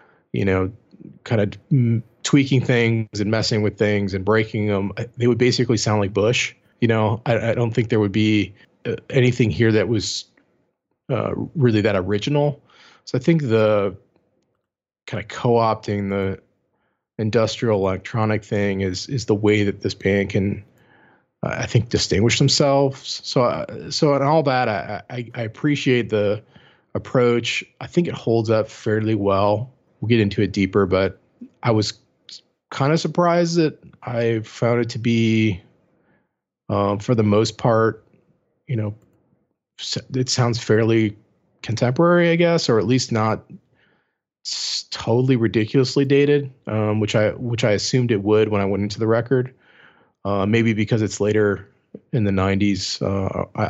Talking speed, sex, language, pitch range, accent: 160 wpm, male, English, 105-125 Hz, American